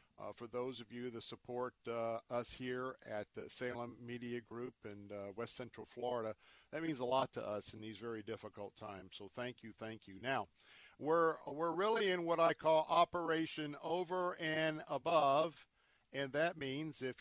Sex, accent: male, American